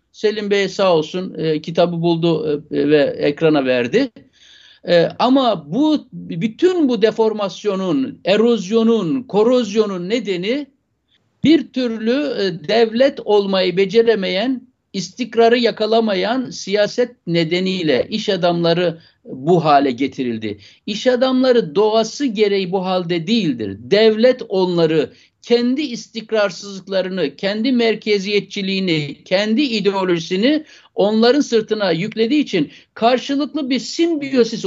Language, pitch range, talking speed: Turkish, 190-255 Hz, 100 wpm